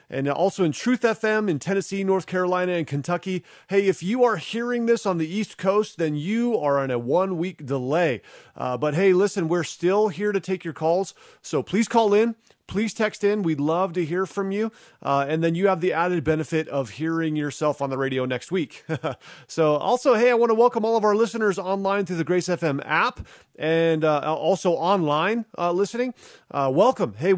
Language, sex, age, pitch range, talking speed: English, male, 30-49, 150-200 Hz, 205 wpm